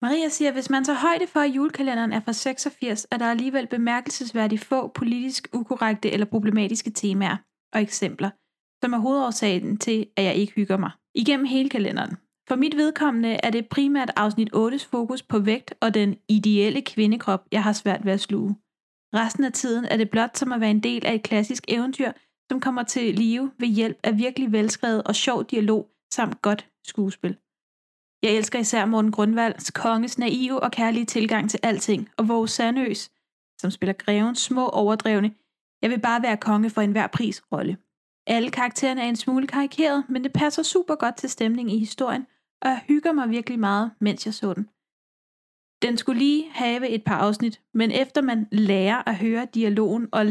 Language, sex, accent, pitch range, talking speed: Danish, female, native, 215-255 Hz, 185 wpm